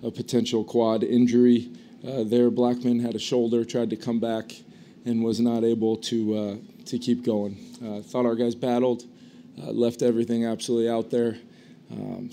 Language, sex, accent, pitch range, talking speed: English, male, American, 110-120 Hz, 170 wpm